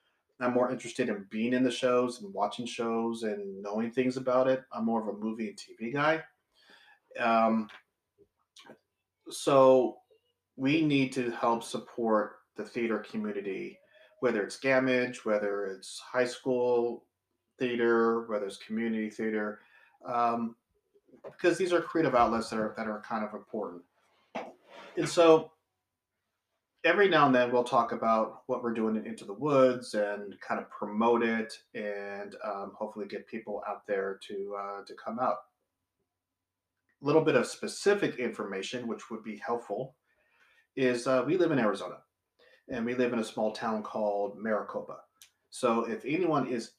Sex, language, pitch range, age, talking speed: male, English, 105-130 Hz, 30-49, 155 wpm